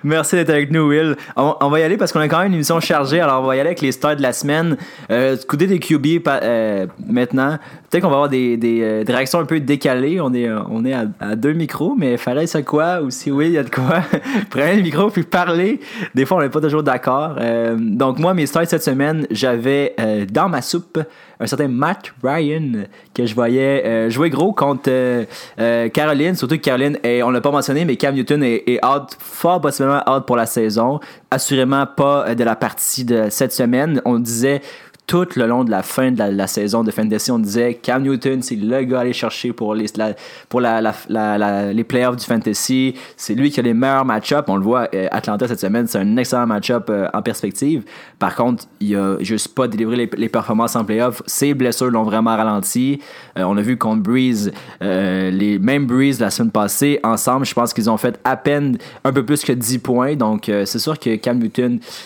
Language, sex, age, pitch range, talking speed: English, male, 20-39, 115-150 Hz, 235 wpm